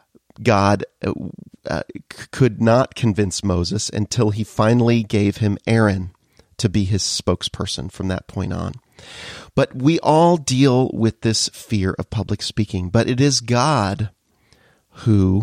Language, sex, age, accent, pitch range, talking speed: English, male, 40-59, American, 100-130 Hz, 135 wpm